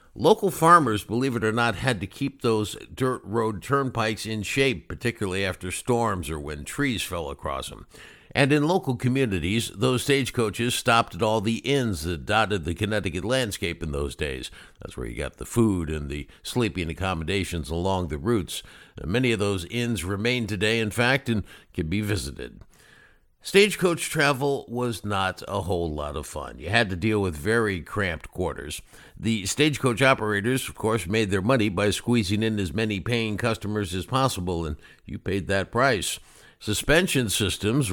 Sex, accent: male, American